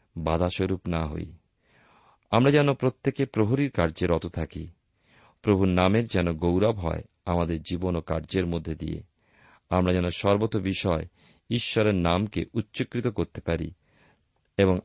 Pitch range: 85-110 Hz